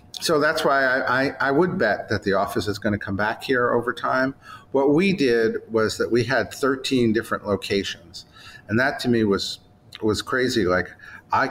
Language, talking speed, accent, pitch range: English, 200 wpm, American, 100-130 Hz